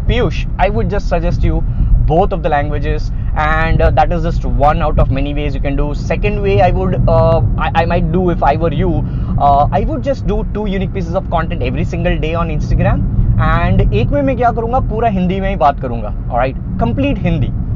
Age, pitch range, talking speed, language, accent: 20-39, 145-215 Hz, 205 wpm, English, Indian